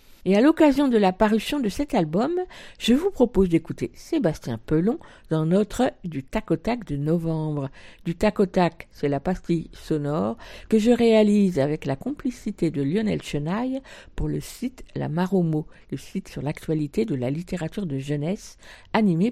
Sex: female